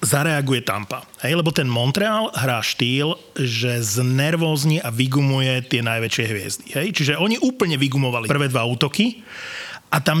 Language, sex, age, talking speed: Slovak, male, 30-49, 145 wpm